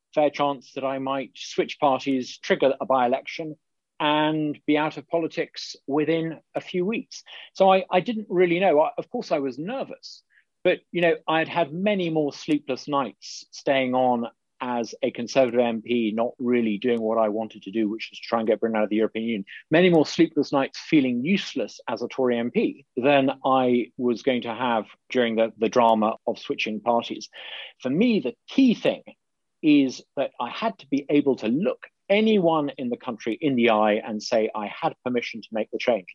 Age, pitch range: 40-59, 120-165 Hz